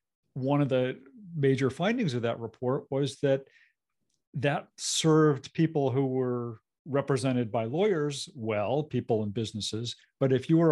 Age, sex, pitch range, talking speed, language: 50-69, male, 120-145 Hz, 145 wpm, English